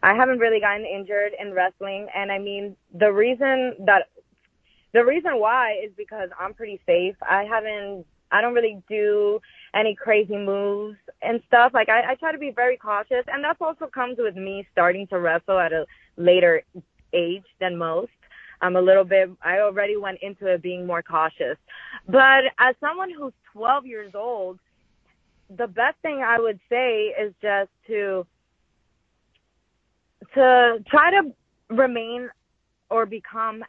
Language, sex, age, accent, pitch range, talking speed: English, female, 20-39, American, 190-240 Hz, 160 wpm